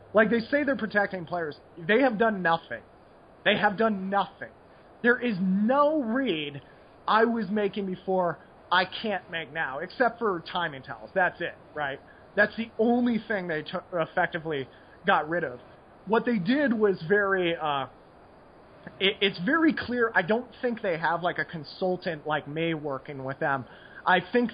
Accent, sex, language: American, male, English